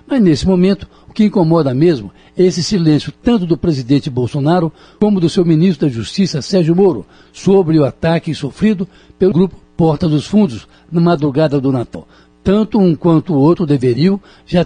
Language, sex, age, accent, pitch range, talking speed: Portuguese, male, 60-79, Brazilian, 150-195 Hz, 170 wpm